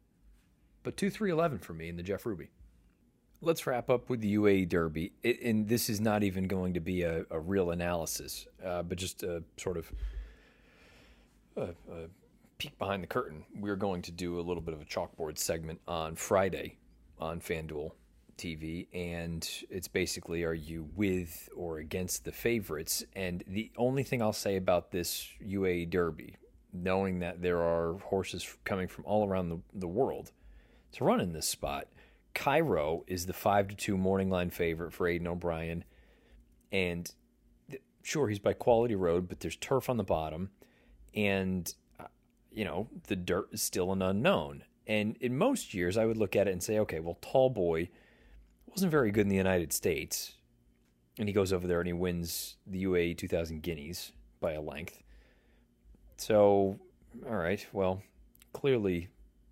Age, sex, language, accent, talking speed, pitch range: 40-59, male, English, American, 170 wpm, 80-100 Hz